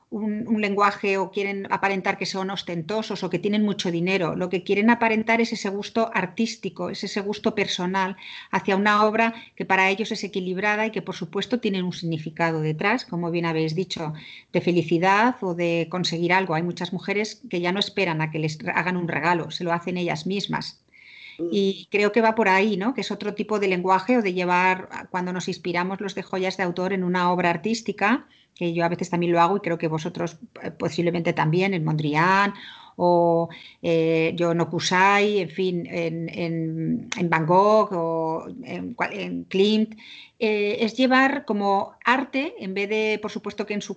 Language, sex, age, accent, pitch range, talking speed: Spanish, female, 40-59, Spanish, 175-210 Hz, 195 wpm